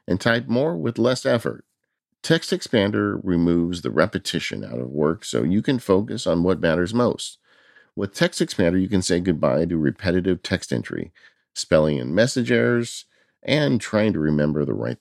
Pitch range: 75-105 Hz